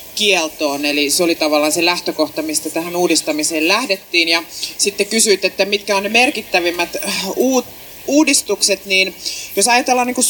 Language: Finnish